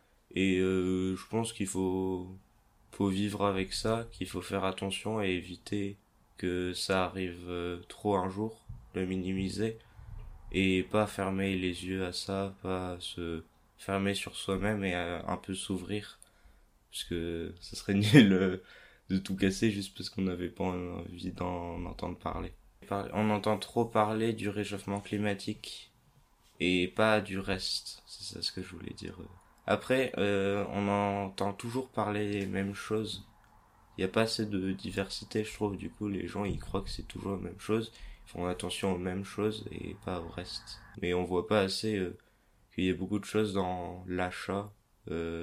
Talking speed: 170 wpm